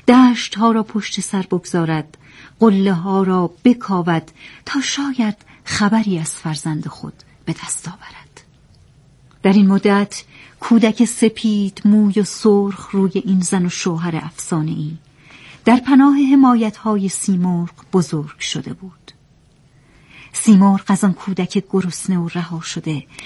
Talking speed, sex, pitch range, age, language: 125 wpm, female, 165-225 Hz, 40-59, Persian